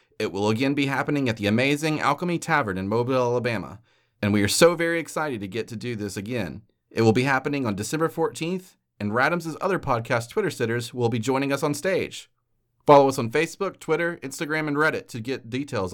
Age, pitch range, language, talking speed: 30-49, 120-155 Hz, English, 205 wpm